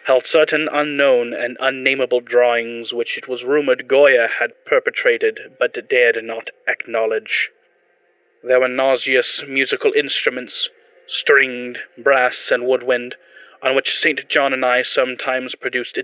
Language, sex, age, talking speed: English, male, 20-39, 125 wpm